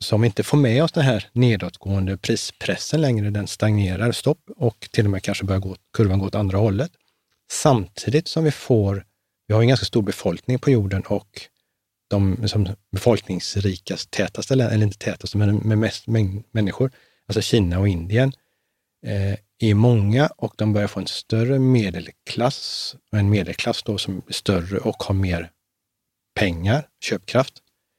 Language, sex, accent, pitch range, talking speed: Swedish, male, native, 95-115 Hz, 160 wpm